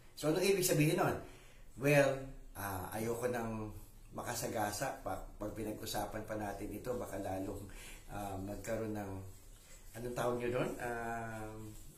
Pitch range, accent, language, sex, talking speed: 105-140 Hz, Filipino, English, male, 125 wpm